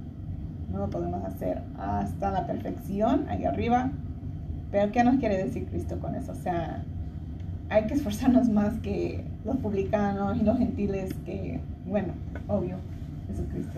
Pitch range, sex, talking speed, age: 80-120 Hz, female, 145 wpm, 30-49